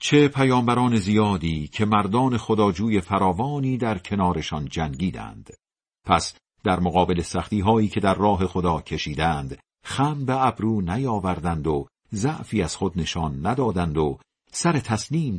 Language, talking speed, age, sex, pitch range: Persian, 135 wpm, 50-69, male, 85-115 Hz